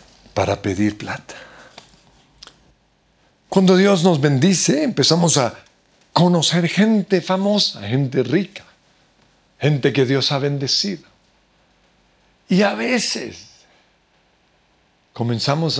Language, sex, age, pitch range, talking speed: Spanish, male, 60-79, 120-175 Hz, 85 wpm